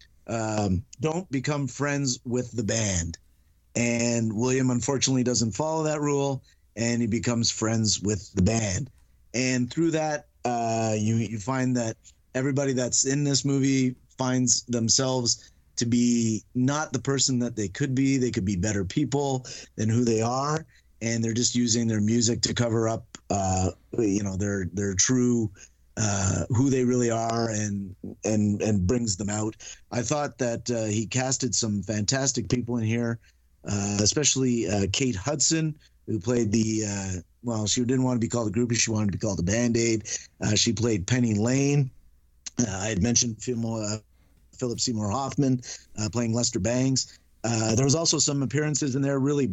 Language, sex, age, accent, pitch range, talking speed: English, male, 30-49, American, 105-130 Hz, 175 wpm